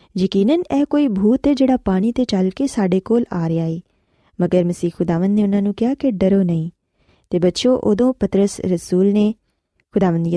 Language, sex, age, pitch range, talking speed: Punjabi, female, 20-39, 180-245 Hz, 195 wpm